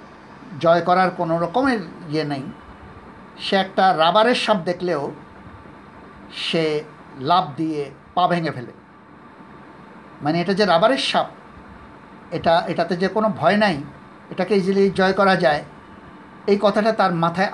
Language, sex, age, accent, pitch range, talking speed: Bengali, male, 50-69, native, 170-215 Hz, 85 wpm